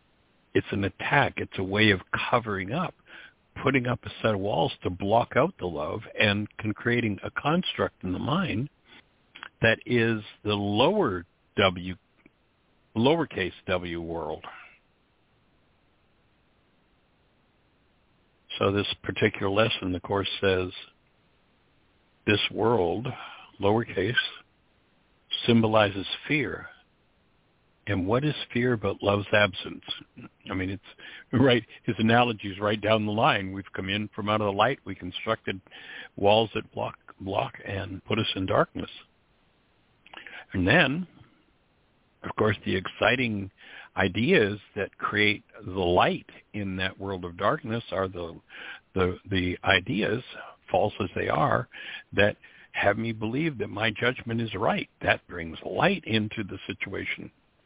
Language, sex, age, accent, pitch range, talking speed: English, male, 60-79, American, 95-115 Hz, 130 wpm